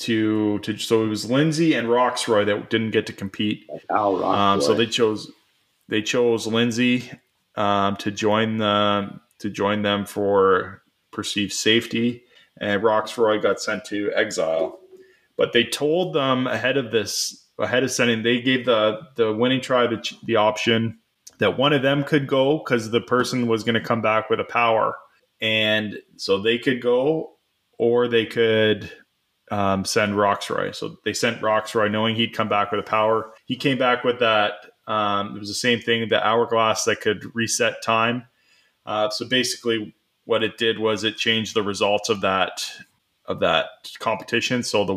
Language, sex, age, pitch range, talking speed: English, male, 20-39, 105-120 Hz, 170 wpm